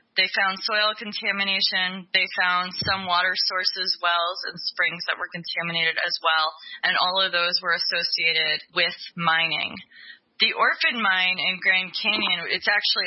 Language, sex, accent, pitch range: English, female, American, 170-195 Hz